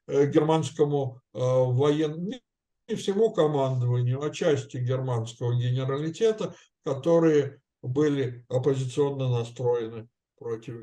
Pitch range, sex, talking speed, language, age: 135-185 Hz, male, 80 wpm, Russian, 60-79